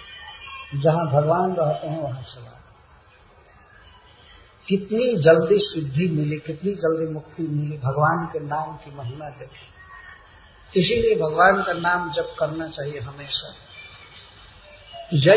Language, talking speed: Hindi, 110 wpm